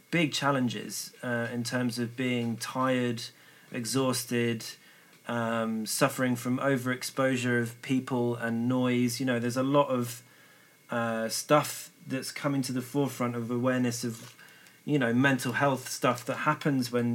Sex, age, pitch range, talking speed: male, 30-49, 120-140 Hz, 145 wpm